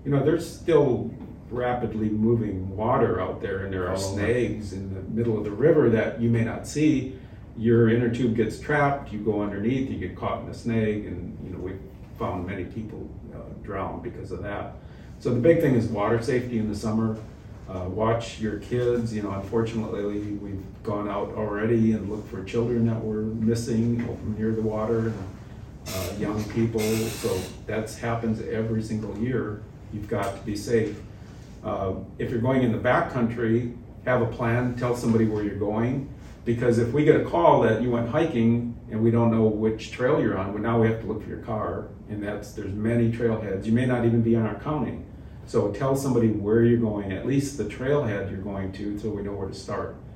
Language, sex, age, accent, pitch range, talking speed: English, male, 40-59, American, 105-115 Hz, 205 wpm